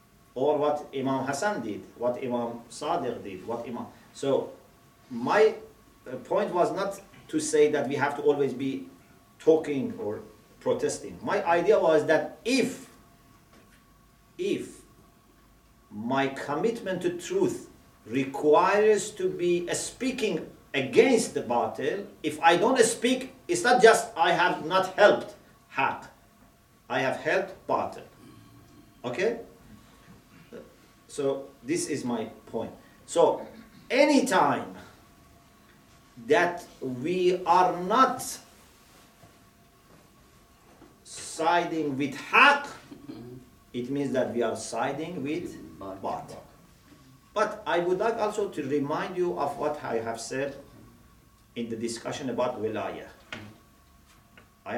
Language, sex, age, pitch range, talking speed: English, male, 50-69, 135-210 Hz, 110 wpm